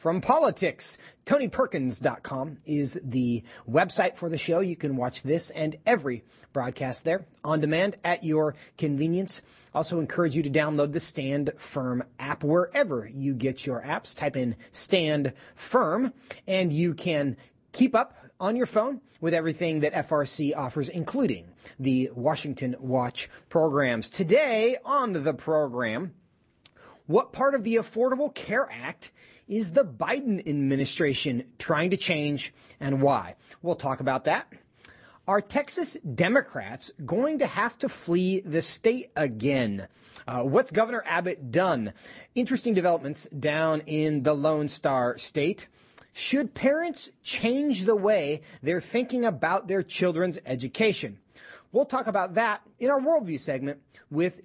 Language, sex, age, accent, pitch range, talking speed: English, male, 30-49, American, 140-195 Hz, 140 wpm